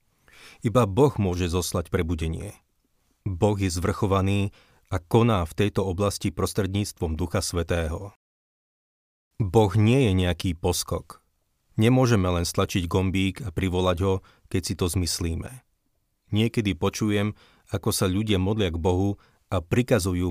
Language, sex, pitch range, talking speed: Slovak, male, 90-105 Hz, 125 wpm